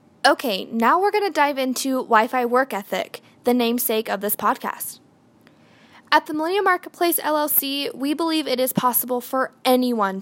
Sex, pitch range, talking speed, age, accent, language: female, 225-280 Hz, 160 wpm, 10-29, American, English